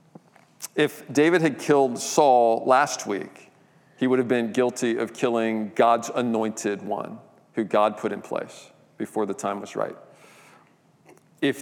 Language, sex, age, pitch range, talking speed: English, male, 40-59, 110-130 Hz, 145 wpm